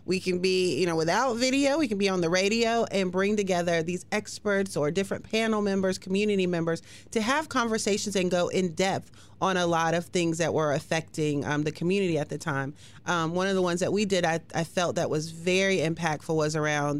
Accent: American